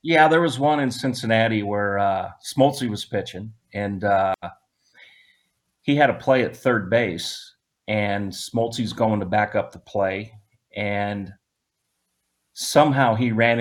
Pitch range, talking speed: 100-115 Hz, 140 wpm